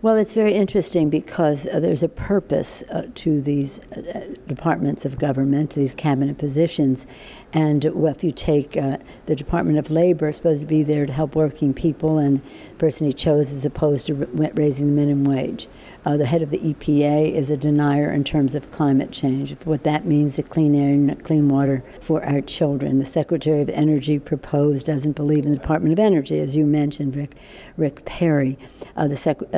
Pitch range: 145-155 Hz